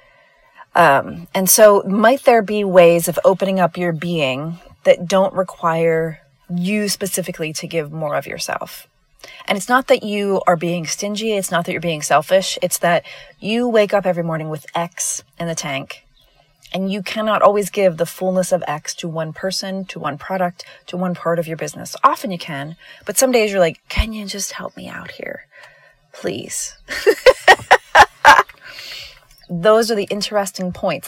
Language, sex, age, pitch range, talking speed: English, female, 30-49, 165-205 Hz, 170 wpm